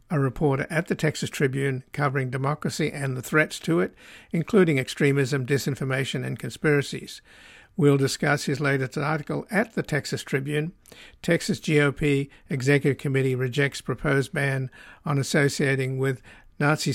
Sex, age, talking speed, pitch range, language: male, 60-79, 135 wpm, 135-150 Hz, English